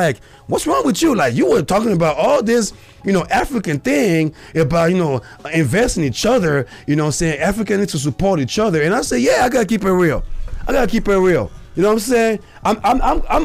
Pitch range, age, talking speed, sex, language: 150-205 Hz, 30-49, 255 wpm, male, English